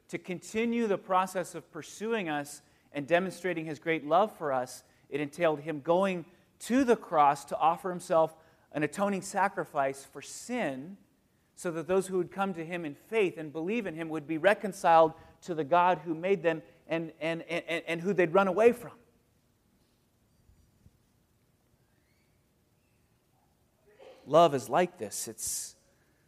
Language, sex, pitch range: English, male, 130-175 Hz